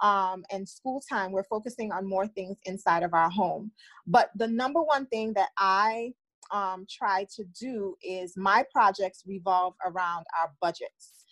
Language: English